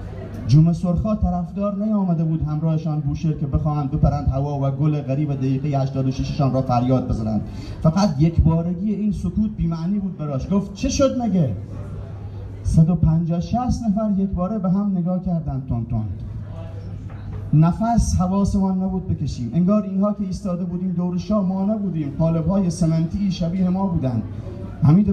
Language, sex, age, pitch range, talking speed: Persian, male, 30-49, 110-180 Hz, 135 wpm